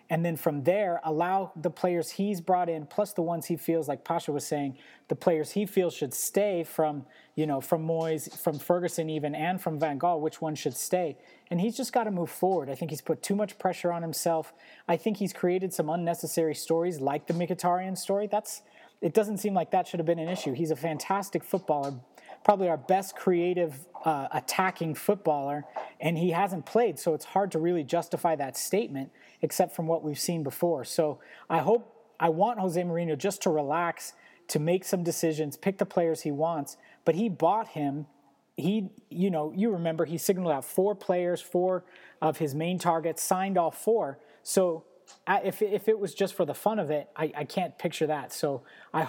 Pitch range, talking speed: 155-190 Hz, 205 wpm